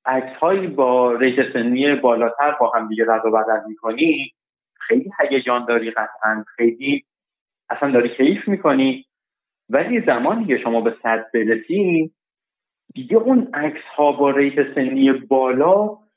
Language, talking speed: Persian, 130 wpm